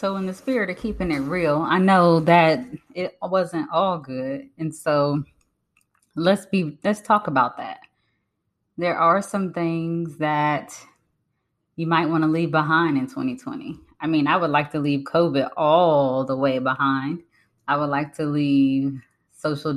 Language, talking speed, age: English, 165 wpm, 20-39